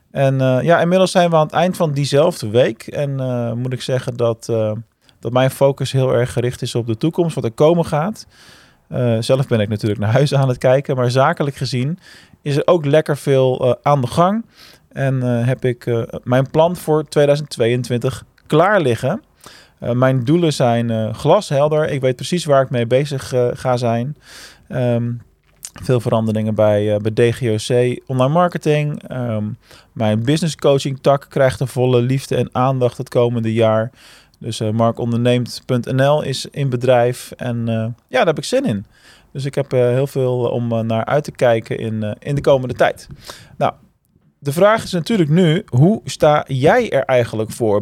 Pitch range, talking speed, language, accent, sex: 120-145 Hz, 185 wpm, Dutch, Dutch, male